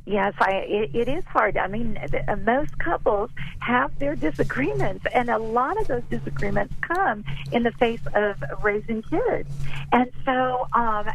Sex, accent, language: female, American, English